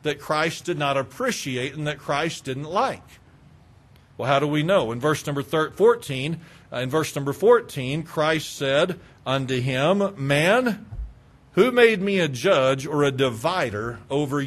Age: 50-69